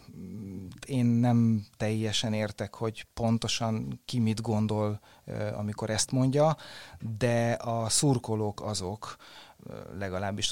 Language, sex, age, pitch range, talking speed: Hungarian, male, 30-49, 100-120 Hz, 95 wpm